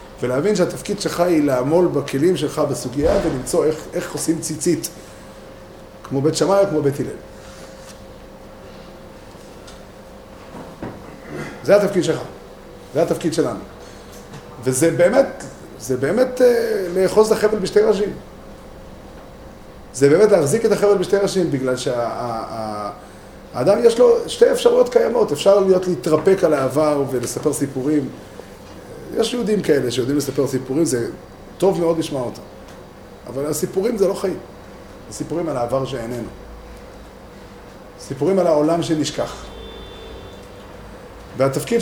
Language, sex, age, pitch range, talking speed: Hebrew, male, 30-49, 135-205 Hz, 115 wpm